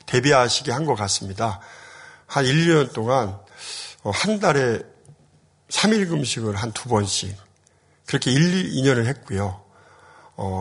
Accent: native